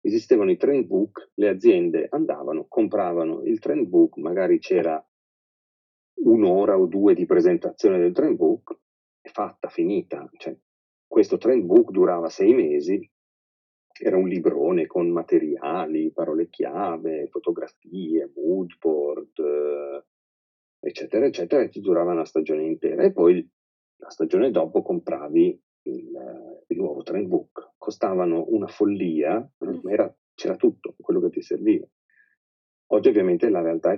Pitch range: 345-375 Hz